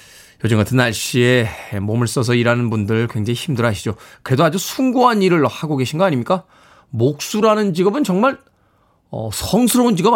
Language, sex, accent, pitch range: Korean, male, native, 120-175 Hz